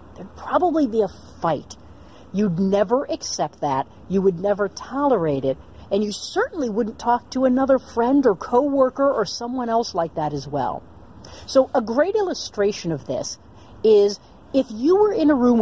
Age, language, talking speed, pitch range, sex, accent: 50-69, English, 170 wpm, 200-295 Hz, female, American